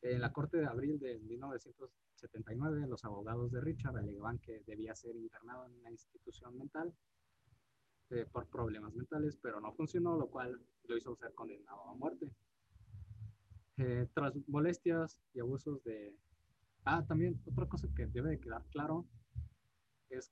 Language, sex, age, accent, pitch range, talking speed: Spanish, male, 20-39, Mexican, 110-145 Hz, 150 wpm